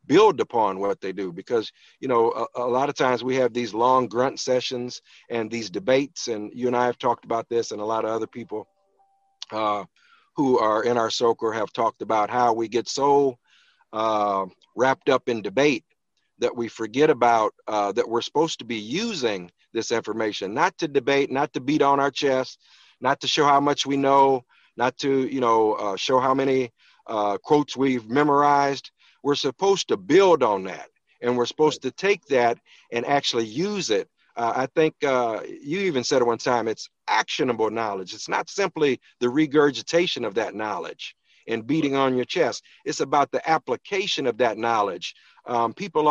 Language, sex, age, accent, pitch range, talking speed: English, male, 50-69, American, 115-145 Hz, 190 wpm